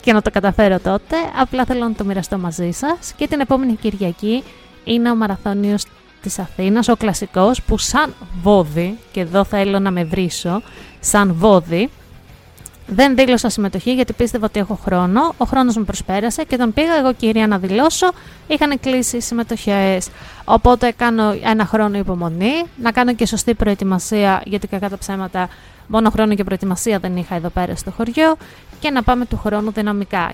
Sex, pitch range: female, 195-235 Hz